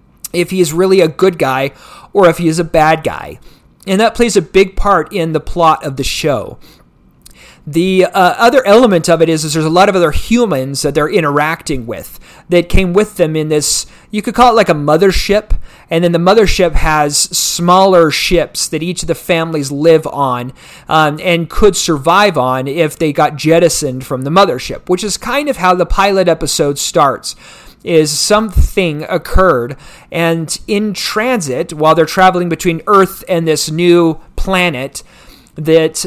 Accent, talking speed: American, 180 wpm